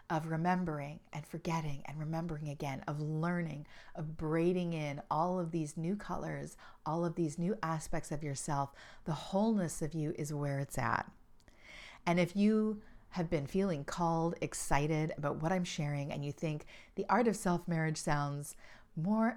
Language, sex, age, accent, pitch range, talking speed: English, female, 40-59, American, 145-175 Hz, 165 wpm